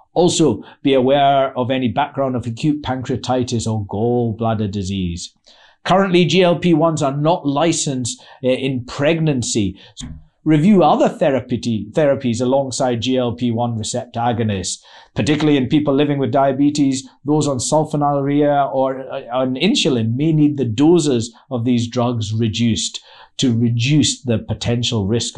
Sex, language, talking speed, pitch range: male, English, 125 wpm, 115-145 Hz